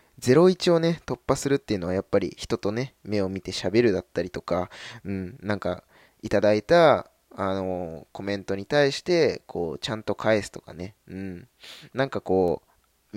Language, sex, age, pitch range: Japanese, male, 20-39, 95-125 Hz